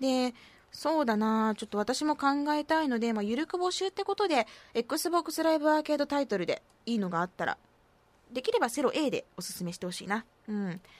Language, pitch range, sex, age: Japanese, 215-335 Hz, female, 20-39